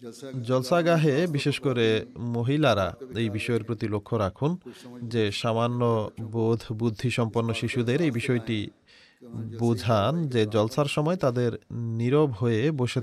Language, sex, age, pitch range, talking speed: Bengali, male, 30-49, 115-135 Hz, 120 wpm